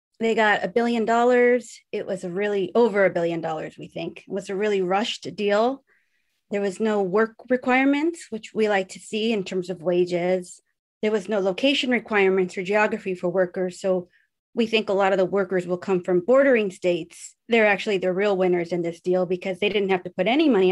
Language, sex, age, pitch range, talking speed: English, female, 30-49, 185-220 Hz, 210 wpm